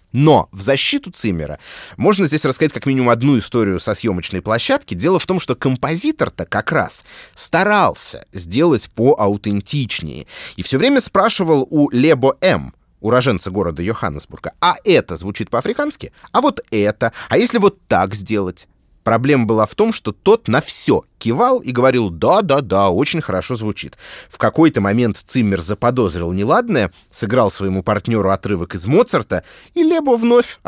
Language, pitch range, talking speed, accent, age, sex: Russian, 105-155 Hz, 150 wpm, native, 30-49, male